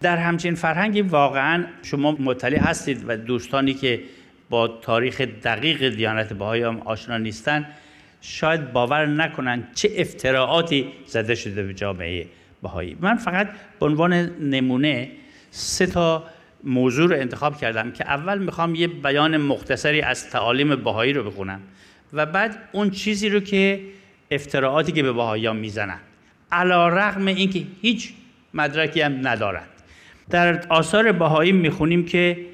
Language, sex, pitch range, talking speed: Persian, male, 125-175 Hz, 130 wpm